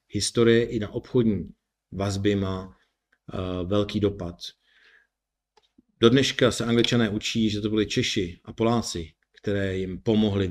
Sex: male